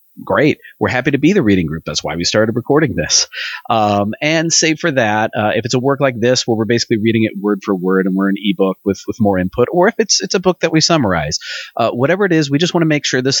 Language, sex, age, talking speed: English, male, 30-49, 280 wpm